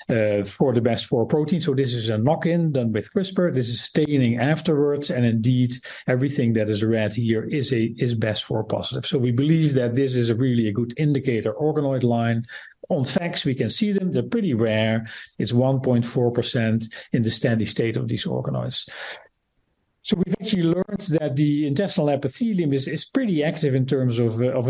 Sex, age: male, 40-59